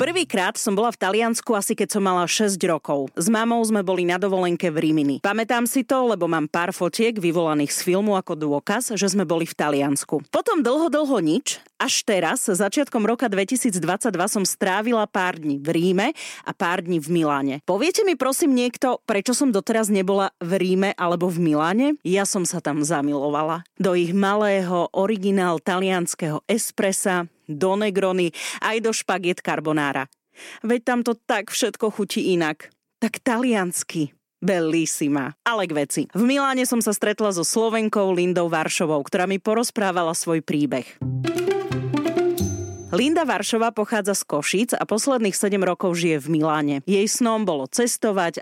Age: 30-49